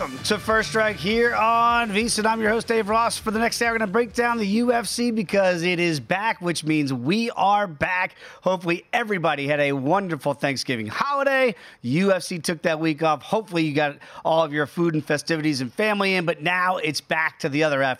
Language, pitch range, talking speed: English, 155-210 Hz, 215 wpm